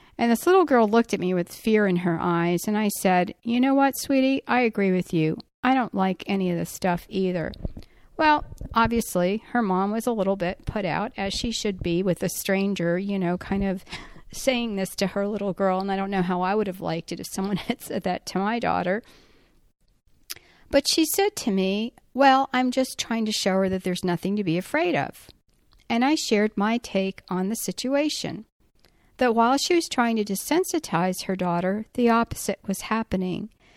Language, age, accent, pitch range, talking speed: English, 50-69, American, 190-240 Hz, 205 wpm